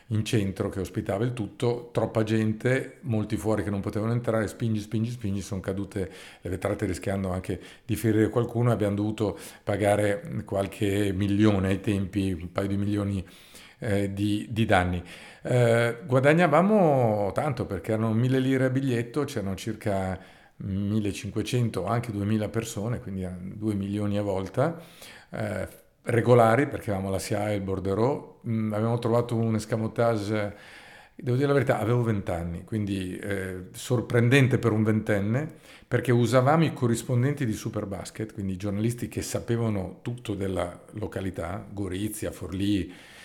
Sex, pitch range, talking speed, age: male, 100-120 Hz, 145 wpm, 50-69